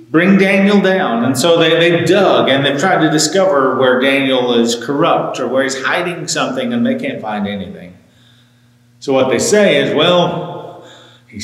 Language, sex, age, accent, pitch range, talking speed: English, male, 40-59, American, 120-150 Hz, 175 wpm